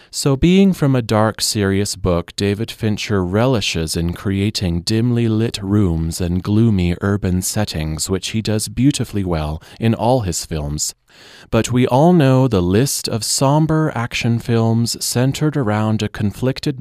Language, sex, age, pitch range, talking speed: English, male, 30-49, 90-125 Hz, 150 wpm